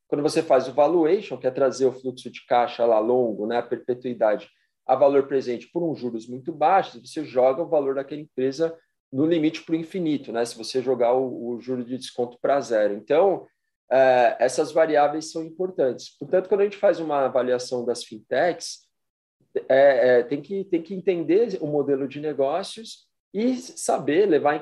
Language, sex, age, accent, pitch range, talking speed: Portuguese, male, 40-59, Brazilian, 125-165 Hz, 190 wpm